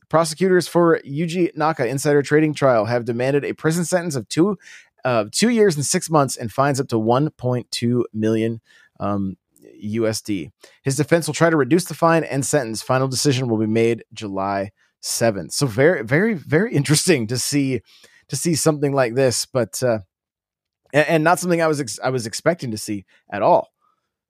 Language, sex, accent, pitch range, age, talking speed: English, male, American, 115-165 Hz, 20-39, 180 wpm